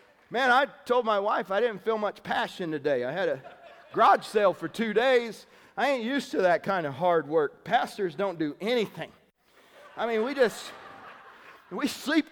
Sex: male